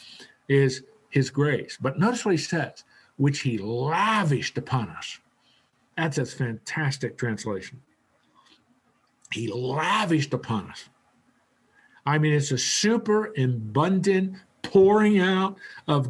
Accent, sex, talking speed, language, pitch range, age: American, male, 110 wpm, English, 125-170 Hz, 50-69